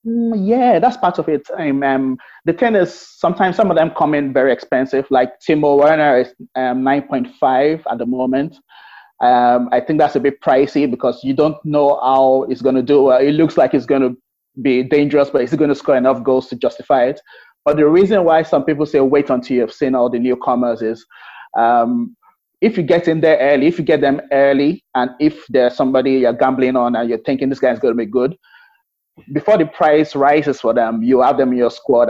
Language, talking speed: English, 220 wpm